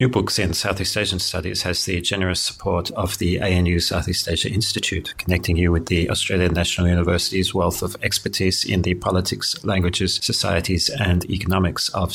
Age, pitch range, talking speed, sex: 30-49, 90-100 Hz, 170 wpm, male